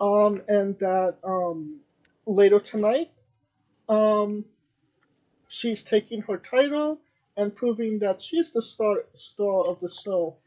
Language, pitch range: English, 170-215 Hz